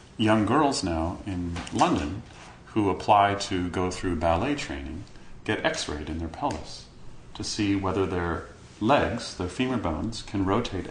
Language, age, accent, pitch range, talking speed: English, 40-59, American, 90-110 Hz, 150 wpm